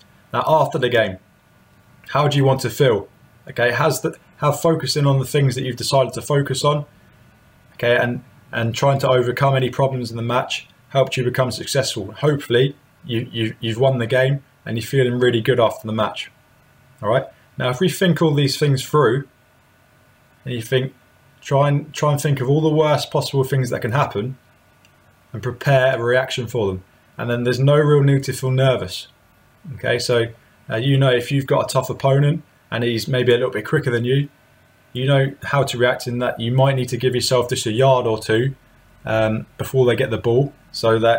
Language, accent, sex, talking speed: English, British, male, 205 wpm